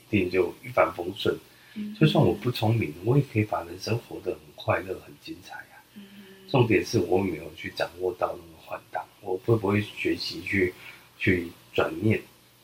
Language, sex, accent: Chinese, male, native